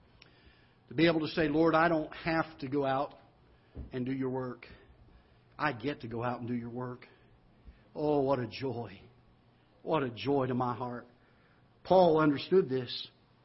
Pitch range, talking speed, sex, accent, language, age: 125-165 Hz, 170 wpm, male, American, English, 50-69